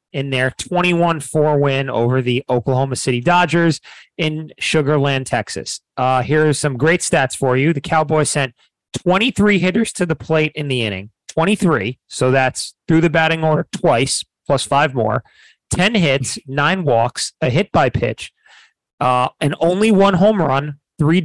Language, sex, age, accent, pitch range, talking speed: English, male, 30-49, American, 130-175 Hz, 155 wpm